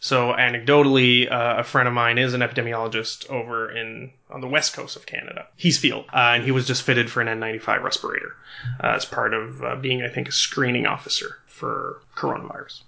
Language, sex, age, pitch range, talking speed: English, male, 30-49, 120-140 Hz, 200 wpm